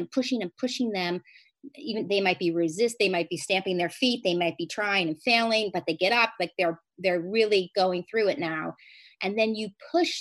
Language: English